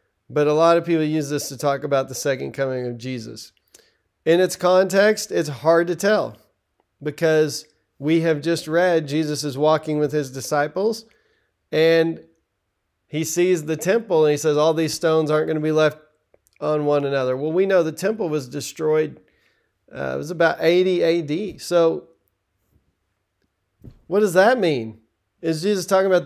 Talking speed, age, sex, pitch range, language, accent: 170 wpm, 40-59, male, 135-175 Hz, English, American